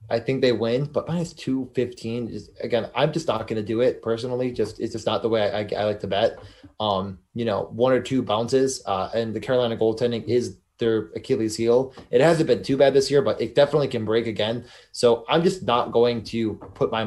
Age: 20-39